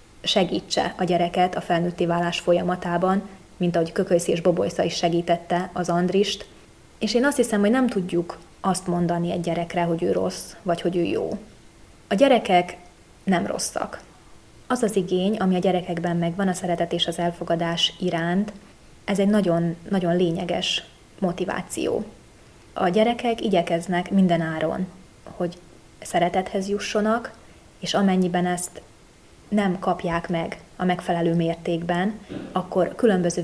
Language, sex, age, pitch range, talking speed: Hungarian, female, 20-39, 170-195 Hz, 135 wpm